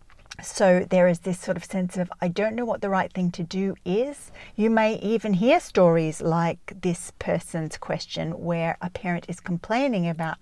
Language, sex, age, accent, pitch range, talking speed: English, female, 40-59, Australian, 165-200 Hz, 190 wpm